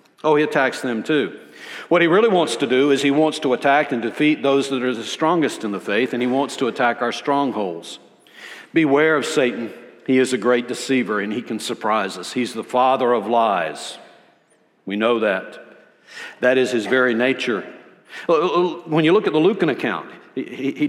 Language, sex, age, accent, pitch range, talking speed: English, male, 60-79, American, 140-235 Hz, 190 wpm